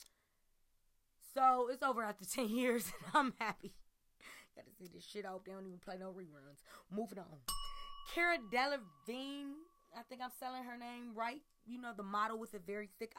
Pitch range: 175-240 Hz